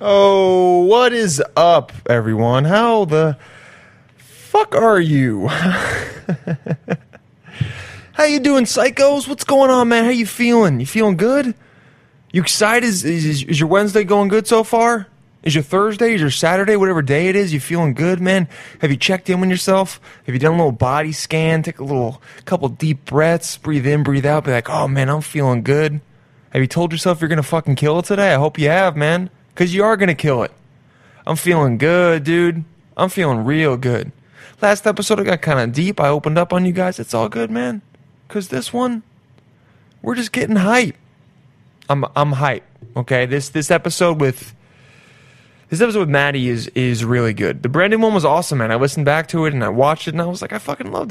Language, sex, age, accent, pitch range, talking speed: English, male, 20-39, American, 135-190 Hz, 200 wpm